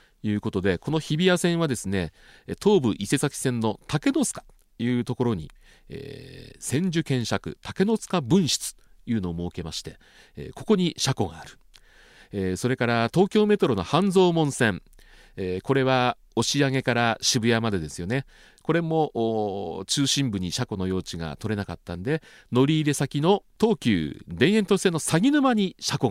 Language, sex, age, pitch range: Japanese, male, 40-59, 100-165 Hz